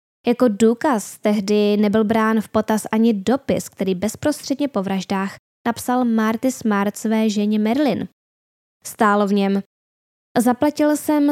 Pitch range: 200-245 Hz